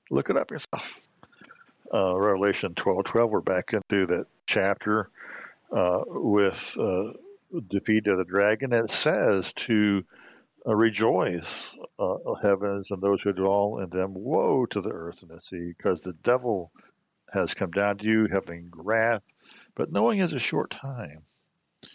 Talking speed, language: 150 wpm, English